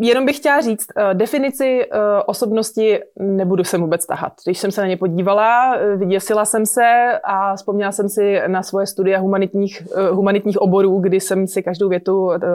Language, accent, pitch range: Czech, native, 185-215 Hz